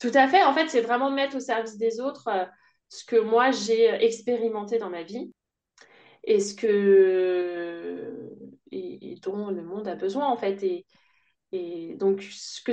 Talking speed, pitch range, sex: 165 wpm, 200-265 Hz, female